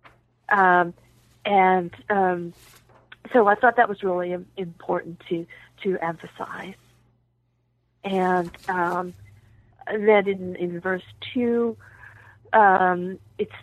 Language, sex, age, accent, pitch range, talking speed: English, female, 40-59, American, 165-215 Hz, 95 wpm